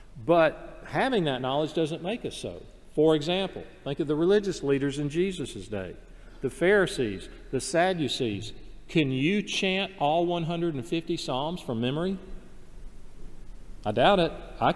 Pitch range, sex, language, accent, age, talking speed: 125-180 Hz, male, English, American, 50-69, 140 wpm